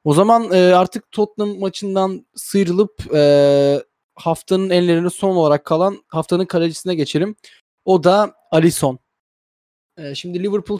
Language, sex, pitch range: Turkish, male, 150-190 Hz